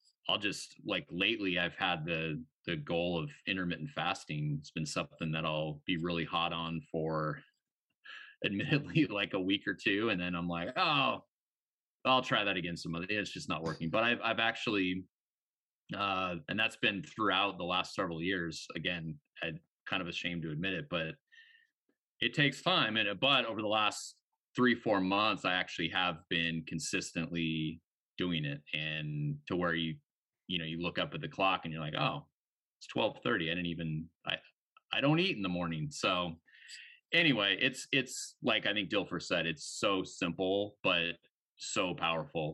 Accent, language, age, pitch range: American, English, 30-49, 80-95 Hz